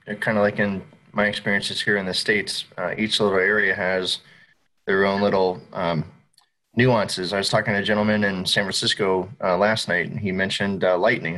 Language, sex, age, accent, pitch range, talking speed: English, male, 30-49, American, 90-115 Hz, 195 wpm